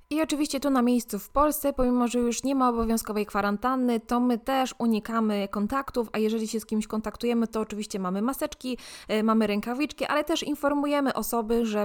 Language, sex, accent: Polish, female, native